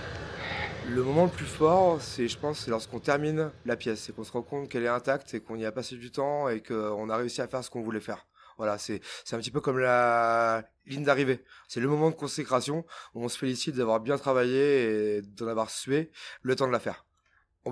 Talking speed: 235 wpm